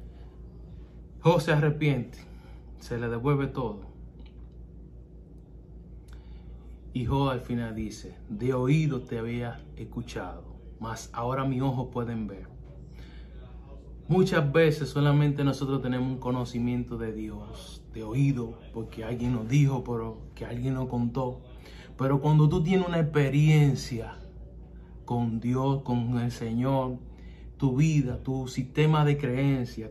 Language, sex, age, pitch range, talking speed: Spanish, male, 30-49, 90-140 Hz, 120 wpm